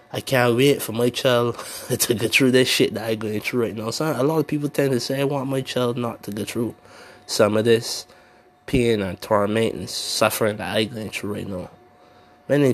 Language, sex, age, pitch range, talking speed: English, male, 20-39, 115-135 Hz, 225 wpm